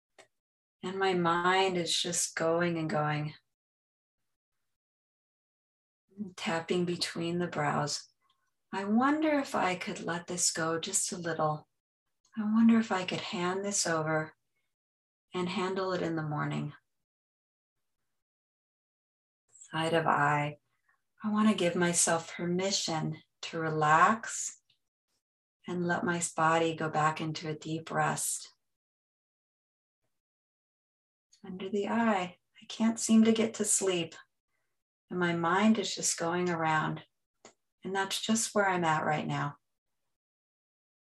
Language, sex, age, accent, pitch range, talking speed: English, female, 30-49, American, 155-195 Hz, 120 wpm